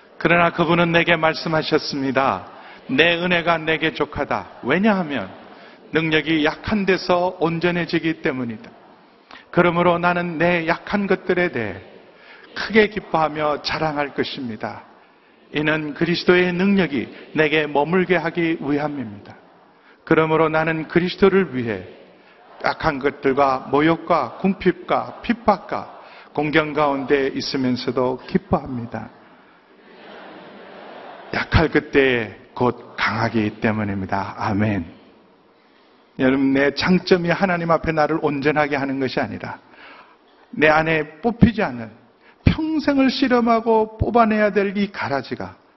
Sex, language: male, Korean